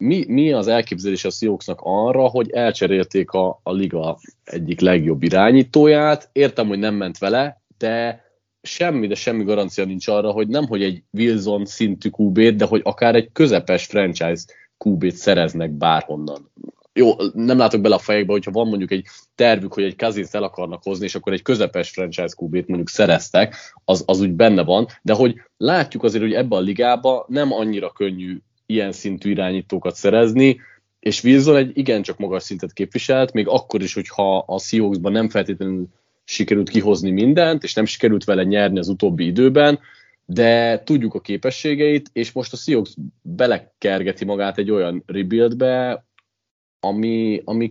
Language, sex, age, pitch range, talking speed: Hungarian, male, 30-49, 95-115 Hz, 160 wpm